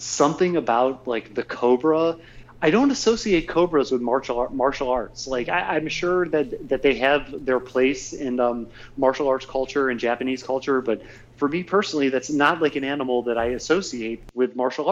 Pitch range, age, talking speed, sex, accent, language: 120-145 Hz, 30-49, 185 wpm, male, American, English